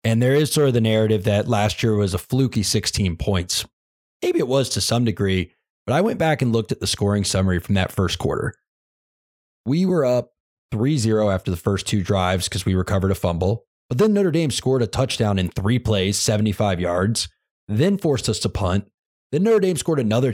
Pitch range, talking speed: 100-130 Hz, 210 wpm